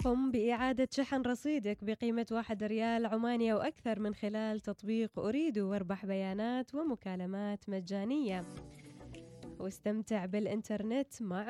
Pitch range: 195-235 Hz